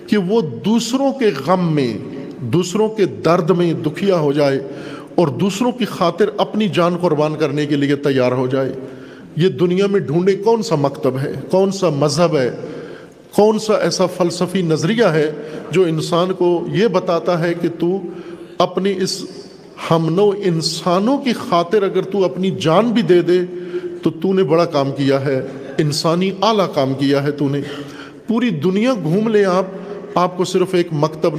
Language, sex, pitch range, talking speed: Urdu, male, 145-190 Hz, 170 wpm